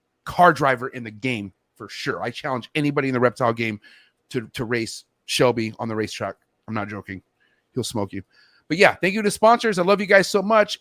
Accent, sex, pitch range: American, male, 145-200 Hz